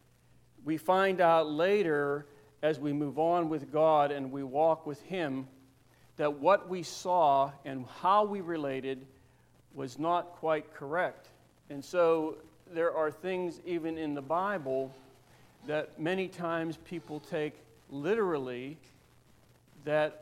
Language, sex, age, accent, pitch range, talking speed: English, male, 50-69, American, 135-165 Hz, 130 wpm